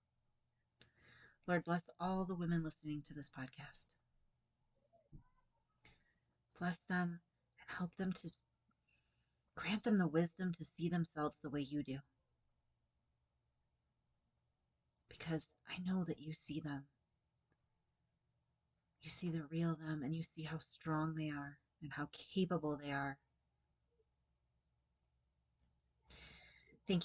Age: 30-49